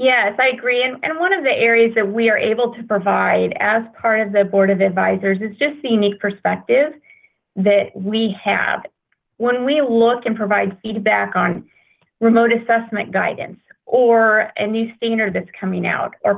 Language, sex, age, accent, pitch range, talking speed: English, female, 30-49, American, 200-245 Hz, 175 wpm